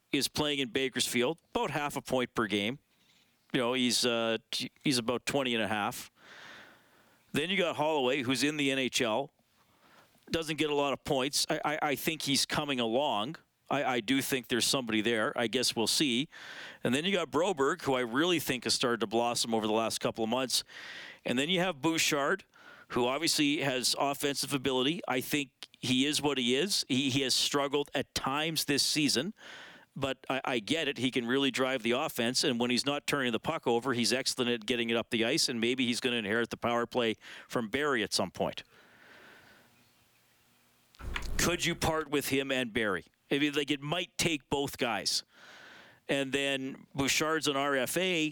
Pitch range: 120-145 Hz